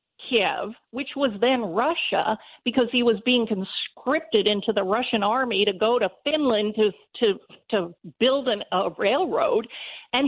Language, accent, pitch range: English, American, 215-295 Hz